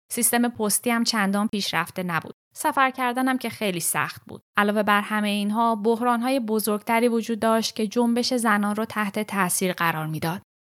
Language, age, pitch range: Persian, 10-29, 185-230 Hz